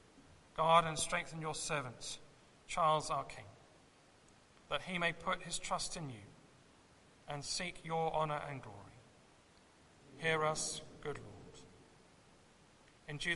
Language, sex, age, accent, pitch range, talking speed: English, male, 40-59, British, 145-170 Hz, 120 wpm